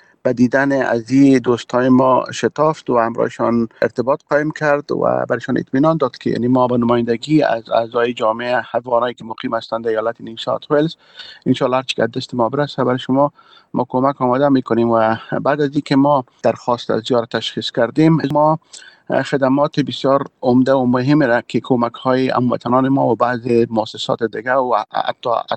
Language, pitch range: Persian, 115-140 Hz